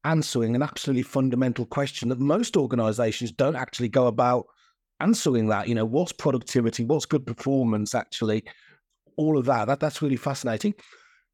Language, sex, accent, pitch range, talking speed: English, male, British, 120-150 Hz, 155 wpm